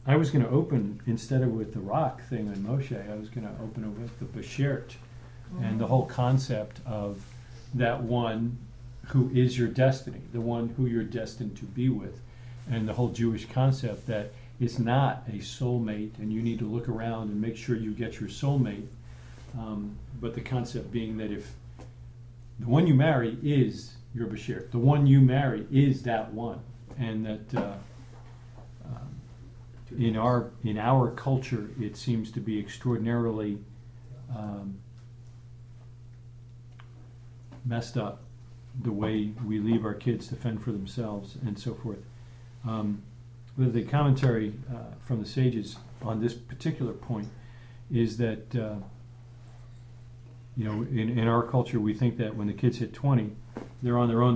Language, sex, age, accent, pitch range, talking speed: English, male, 50-69, American, 110-125 Hz, 160 wpm